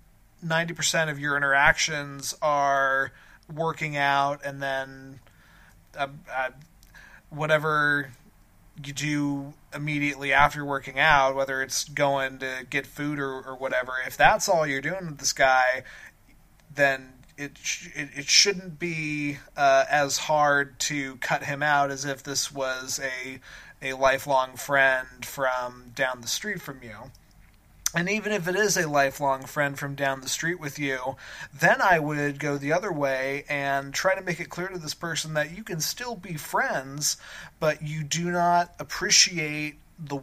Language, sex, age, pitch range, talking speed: English, male, 20-39, 135-155 Hz, 155 wpm